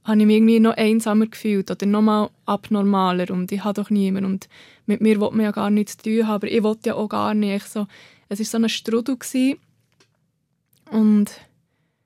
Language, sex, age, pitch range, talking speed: German, female, 20-39, 200-225 Hz, 195 wpm